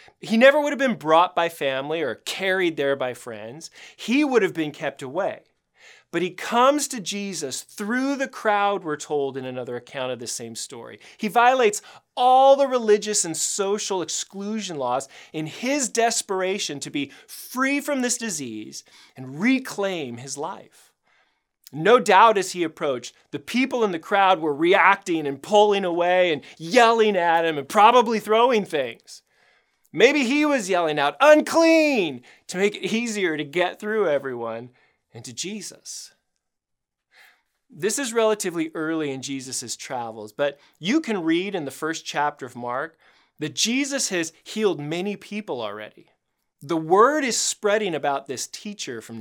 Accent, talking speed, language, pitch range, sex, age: American, 155 wpm, English, 145-230 Hz, male, 30-49